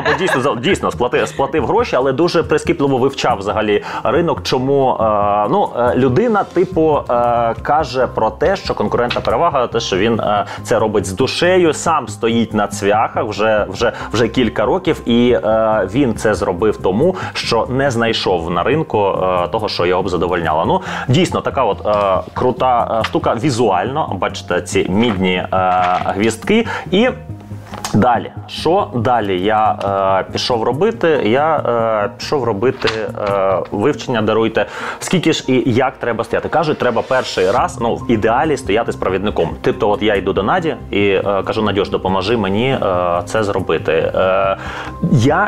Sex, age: male, 30-49